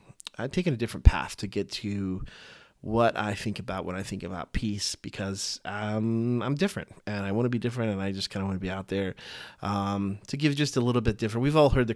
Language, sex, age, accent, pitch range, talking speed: English, male, 30-49, American, 95-115 Hz, 245 wpm